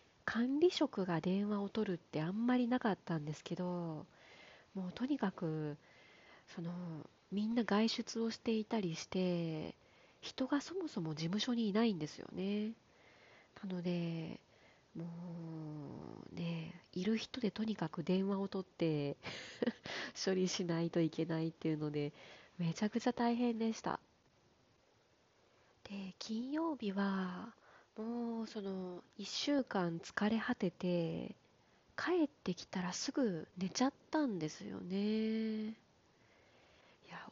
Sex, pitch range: female, 170-235 Hz